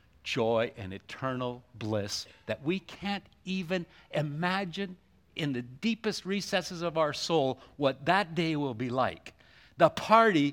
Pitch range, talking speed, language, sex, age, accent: 105-160 Hz, 135 wpm, English, male, 60-79, American